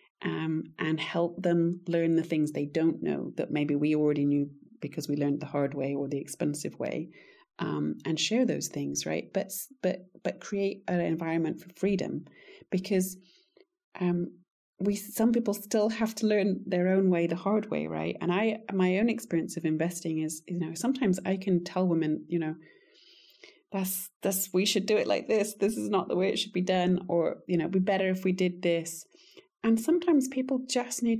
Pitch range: 170-220 Hz